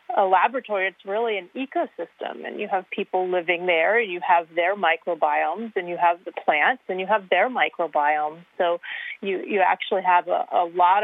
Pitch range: 175-245 Hz